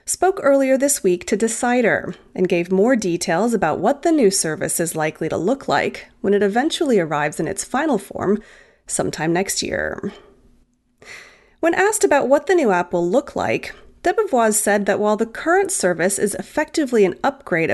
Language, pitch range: English, 180-275 Hz